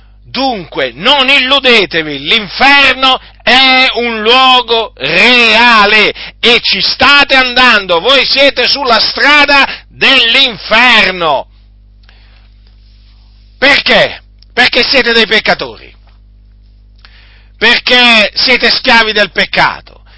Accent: native